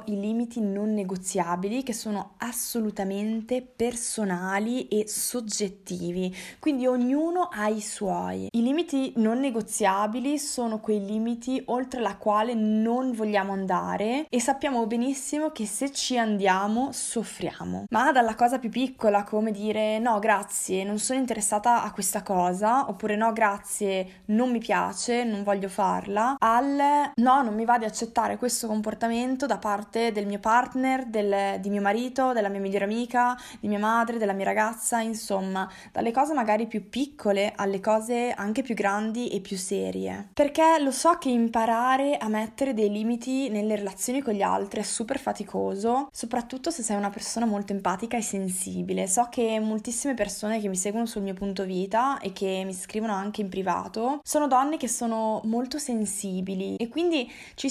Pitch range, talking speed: 205-245 Hz, 160 wpm